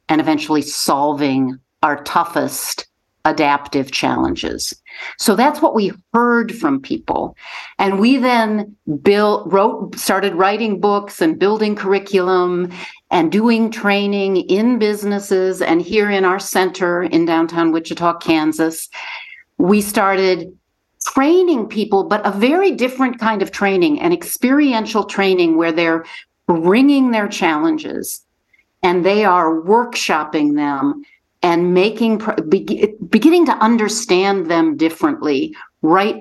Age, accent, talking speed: 50-69, American, 120 wpm